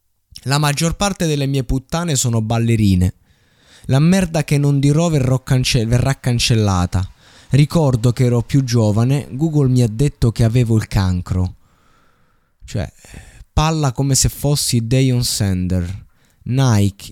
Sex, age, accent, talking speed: male, 20-39, native, 130 wpm